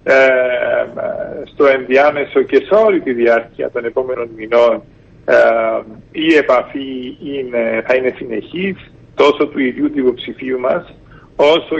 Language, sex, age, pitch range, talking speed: Greek, male, 50-69, 130-195 Hz, 125 wpm